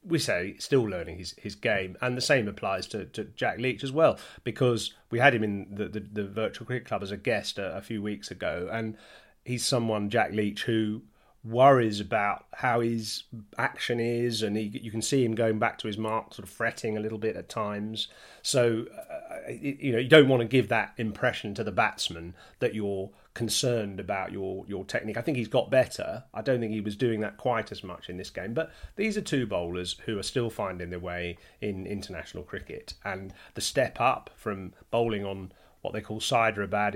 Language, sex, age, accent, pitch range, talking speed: English, male, 30-49, British, 100-115 Hz, 215 wpm